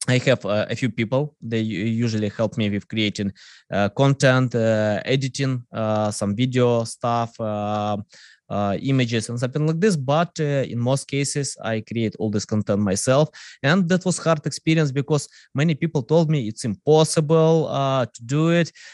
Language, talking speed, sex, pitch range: English, 175 wpm, male, 110-140 Hz